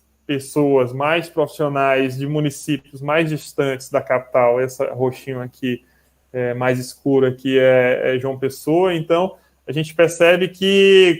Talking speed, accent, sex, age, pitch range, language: 135 wpm, Brazilian, male, 20-39, 135-170 Hz, Portuguese